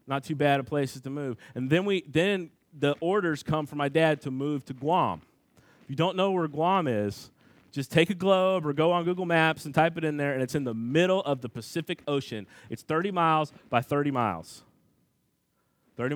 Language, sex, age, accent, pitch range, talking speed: English, male, 30-49, American, 115-145 Hz, 215 wpm